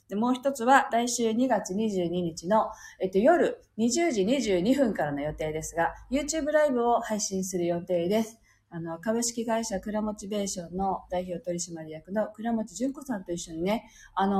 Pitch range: 175-240 Hz